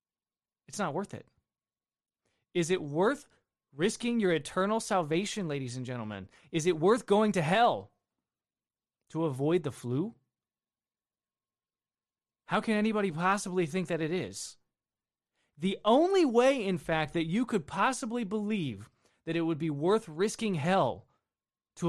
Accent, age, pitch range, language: American, 20-39, 140-200 Hz, English